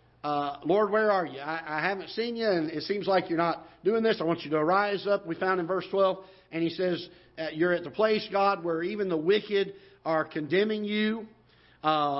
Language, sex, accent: English, male, American